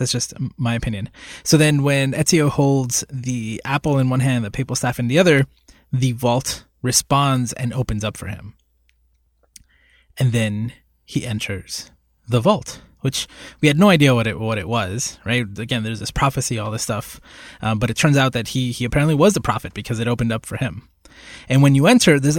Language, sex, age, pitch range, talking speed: English, male, 20-39, 110-135 Hz, 200 wpm